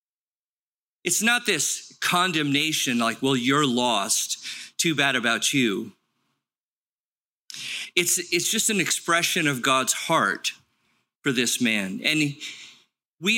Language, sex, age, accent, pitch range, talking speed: English, male, 50-69, American, 130-180 Hz, 110 wpm